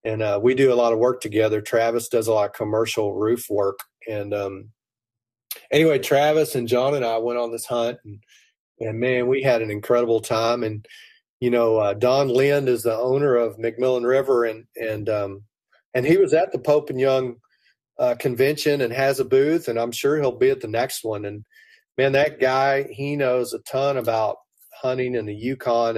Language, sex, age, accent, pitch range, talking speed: English, male, 40-59, American, 110-130 Hz, 205 wpm